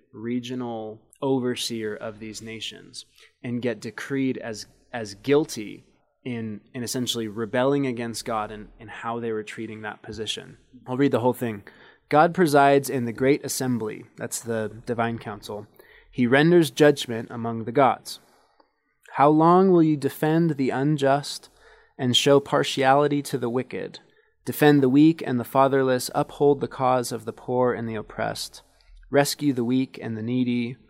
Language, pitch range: English, 115-140 Hz